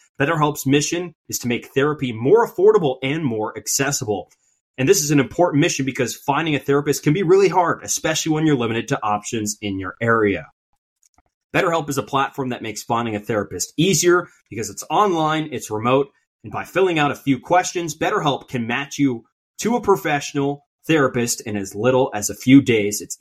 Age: 30-49